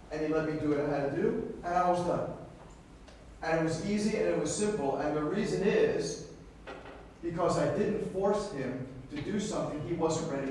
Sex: male